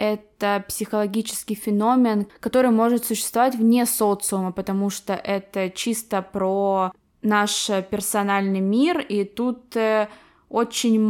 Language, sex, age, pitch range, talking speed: Russian, female, 20-39, 200-230 Hz, 105 wpm